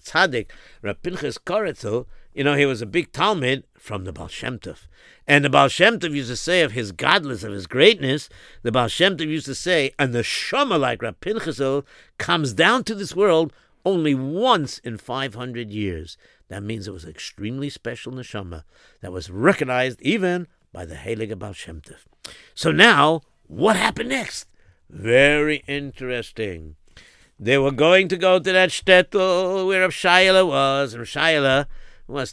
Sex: male